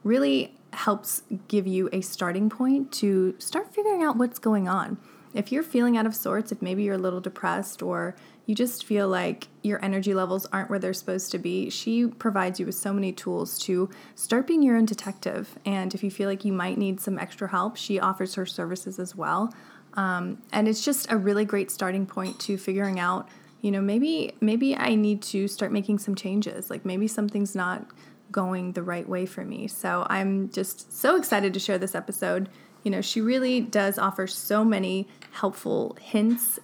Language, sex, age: English, female, 20-39